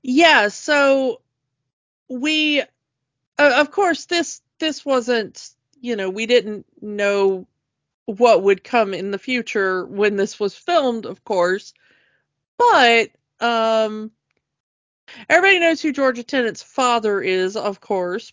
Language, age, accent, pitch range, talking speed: English, 40-59, American, 205-250 Hz, 120 wpm